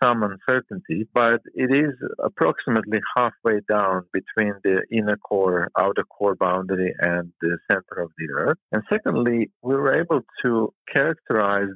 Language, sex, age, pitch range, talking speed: English, male, 50-69, 105-135 Hz, 145 wpm